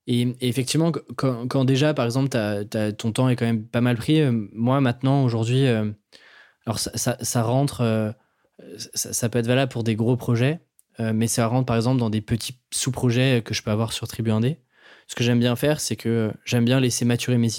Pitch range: 115-130 Hz